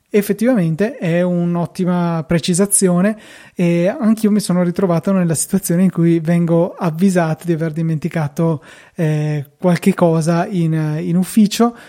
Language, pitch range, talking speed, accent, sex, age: Italian, 155-185 Hz, 120 wpm, native, male, 20-39